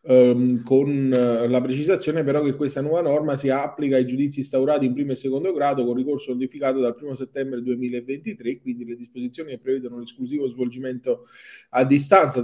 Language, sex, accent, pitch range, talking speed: Italian, male, native, 120-145 Hz, 175 wpm